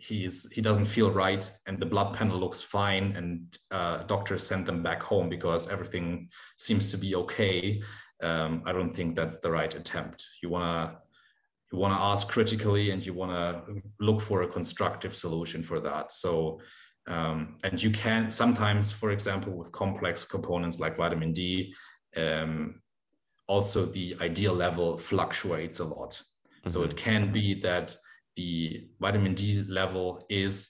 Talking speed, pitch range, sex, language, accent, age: 155 wpm, 85-100 Hz, male, English, German, 30-49